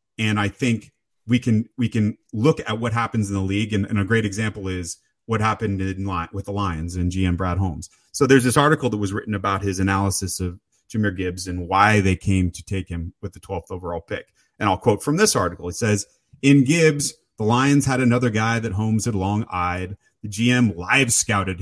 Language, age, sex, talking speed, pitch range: English, 30-49, male, 220 wpm, 95-125 Hz